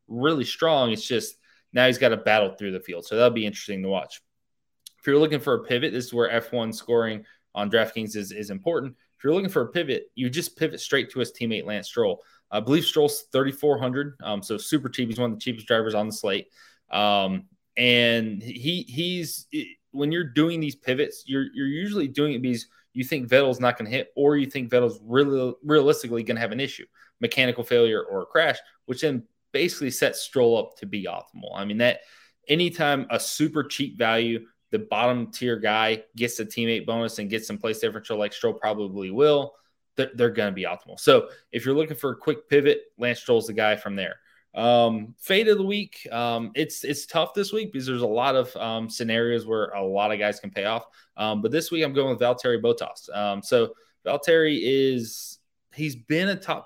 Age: 20-39